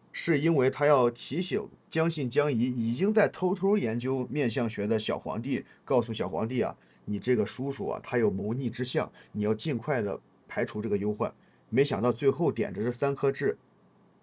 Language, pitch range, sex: Chinese, 110-150 Hz, male